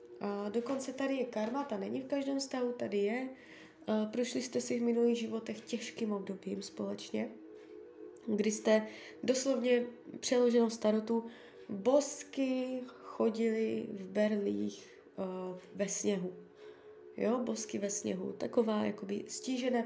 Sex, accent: female, native